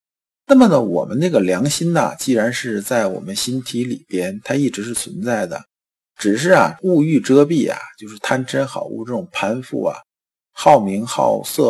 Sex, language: male, Chinese